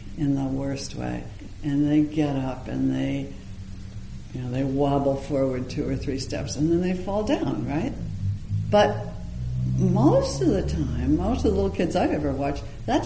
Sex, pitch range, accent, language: female, 105-175 Hz, American, English